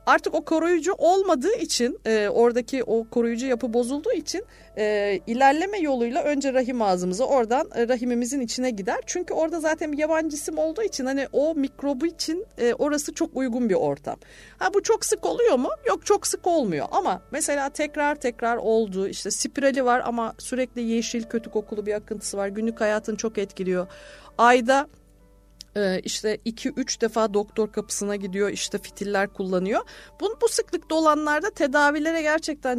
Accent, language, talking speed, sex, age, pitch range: native, Turkish, 155 wpm, female, 40-59, 215-295 Hz